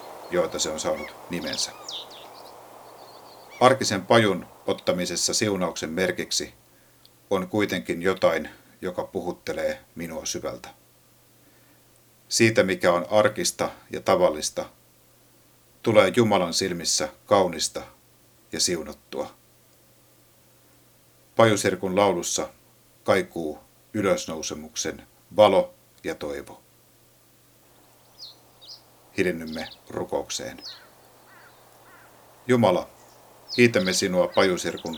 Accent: native